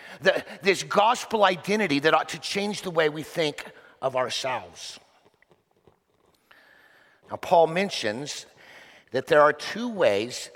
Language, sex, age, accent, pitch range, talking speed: English, male, 50-69, American, 135-190 Hz, 125 wpm